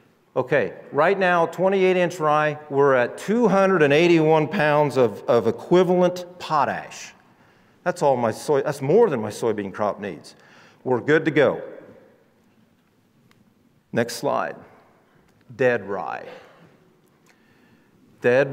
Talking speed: 100 wpm